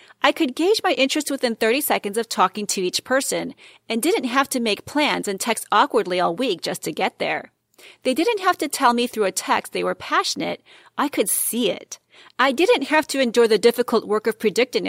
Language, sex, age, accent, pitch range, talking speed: English, female, 40-59, American, 200-315 Hz, 220 wpm